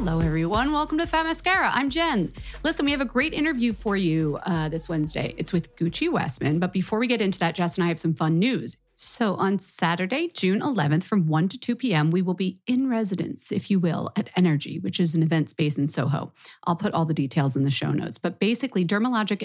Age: 30-49